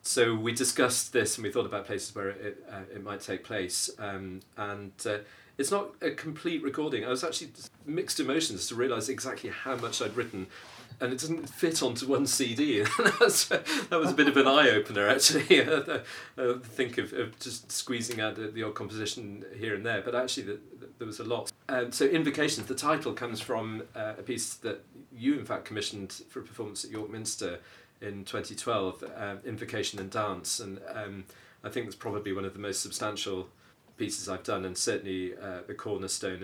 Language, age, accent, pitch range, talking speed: English, 40-59, British, 95-125 Hz, 195 wpm